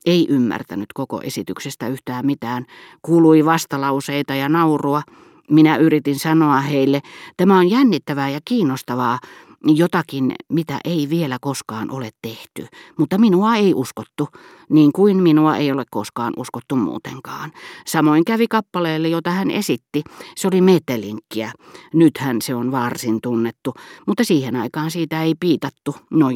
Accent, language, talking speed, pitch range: native, Finnish, 135 wpm, 130-170 Hz